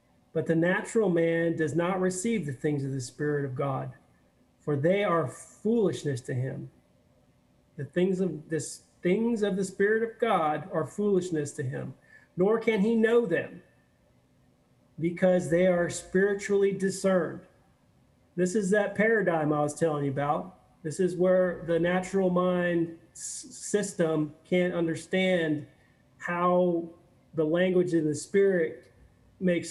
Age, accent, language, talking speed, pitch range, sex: 40-59, American, English, 140 wpm, 155-190 Hz, male